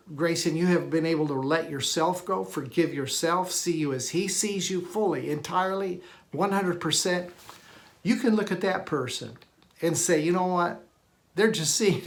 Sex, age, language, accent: male, 60-79, English, American